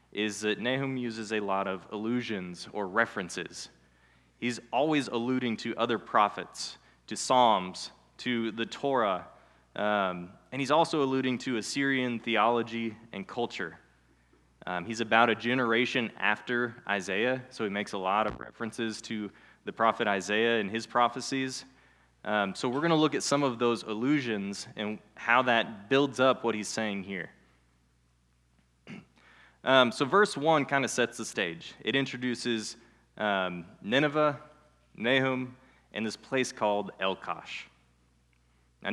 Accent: American